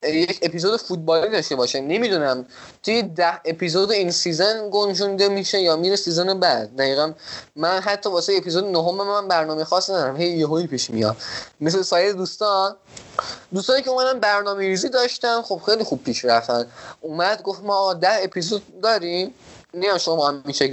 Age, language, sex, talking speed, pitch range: 20-39, Persian, male, 160 wpm, 155-200 Hz